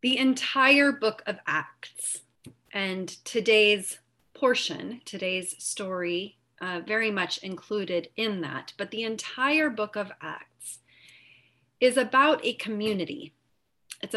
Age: 30-49